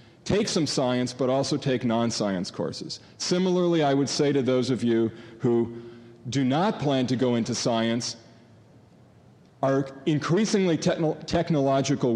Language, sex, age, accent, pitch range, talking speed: English, male, 40-59, American, 115-145 Hz, 135 wpm